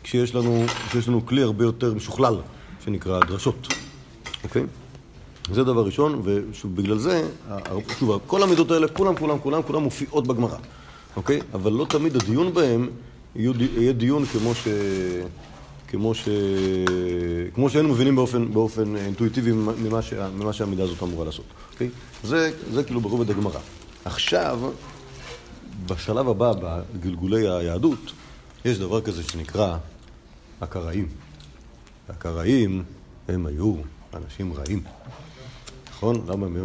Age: 40-59